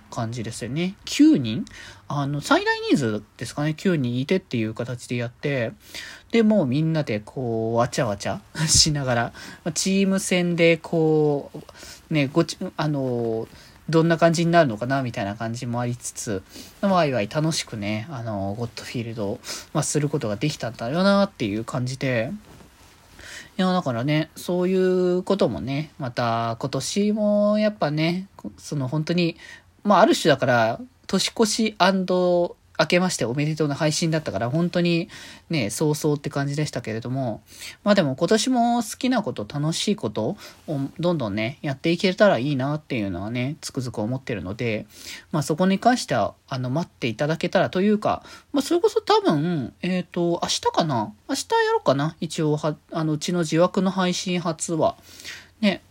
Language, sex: Japanese, male